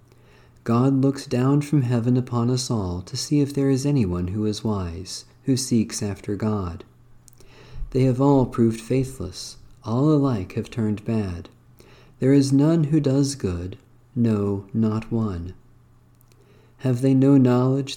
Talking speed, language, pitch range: 145 wpm, English, 110-130 Hz